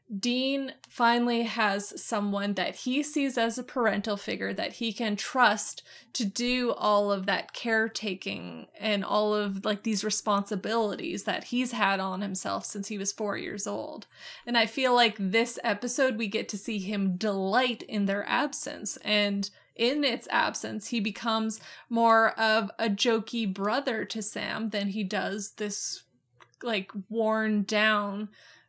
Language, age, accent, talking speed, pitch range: English, 20-39, American, 155 wpm, 210-245 Hz